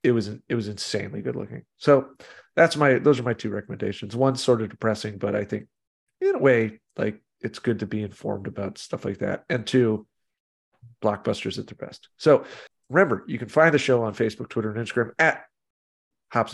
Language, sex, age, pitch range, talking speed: English, male, 40-59, 110-145 Hz, 200 wpm